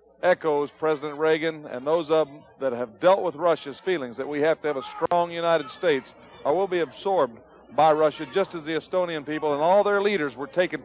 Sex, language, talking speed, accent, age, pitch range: male, English, 215 wpm, American, 50-69, 150-185 Hz